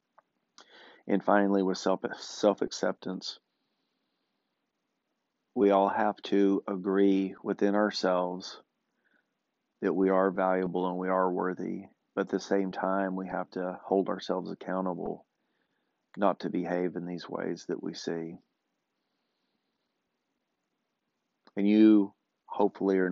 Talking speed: 115 wpm